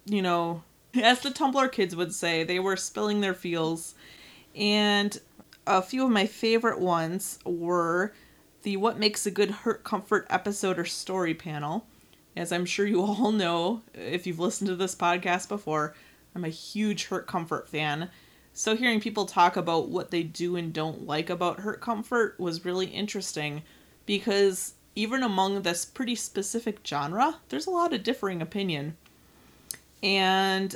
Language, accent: English, American